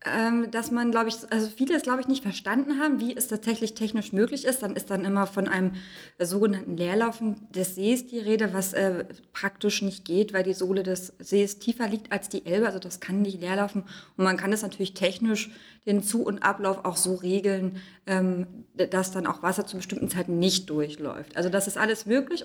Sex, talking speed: female, 210 wpm